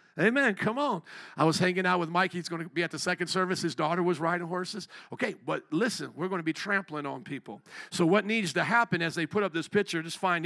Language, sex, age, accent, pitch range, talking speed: English, male, 50-69, American, 175-235 Hz, 260 wpm